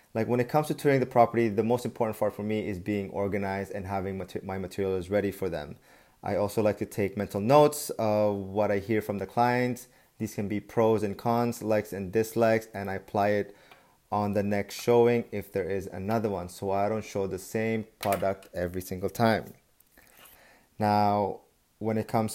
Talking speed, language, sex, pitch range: 200 wpm, English, male, 100-115 Hz